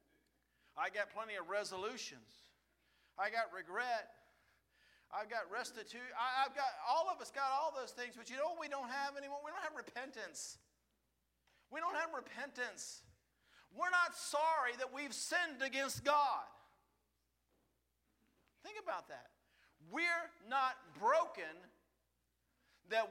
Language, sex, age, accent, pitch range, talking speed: English, male, 50-69, American, 195-290 Hz, 130 wpm